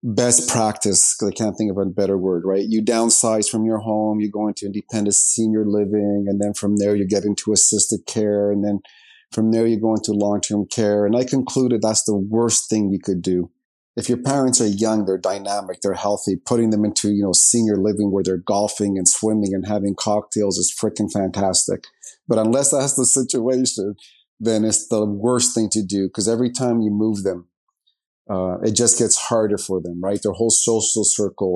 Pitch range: 100-115 Hz